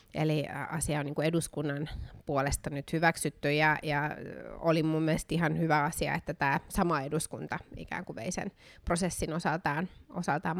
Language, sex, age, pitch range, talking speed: Finnish, female, 20-39, 145-165 Hz, 140 wpm